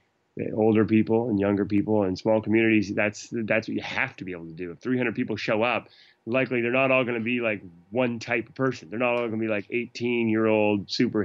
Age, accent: 20-39, American